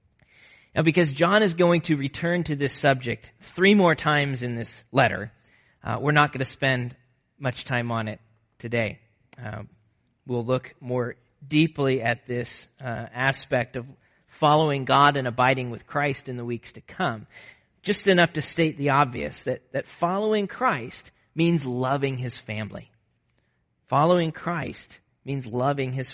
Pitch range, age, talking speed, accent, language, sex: 125-170 Hz, 40-59, 155 wpm, American, English, male